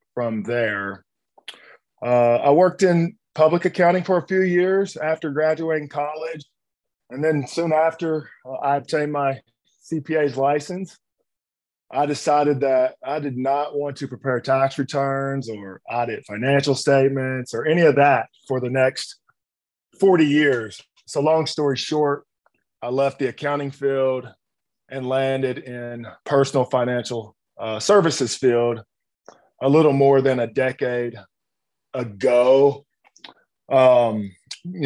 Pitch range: 120-145 Hz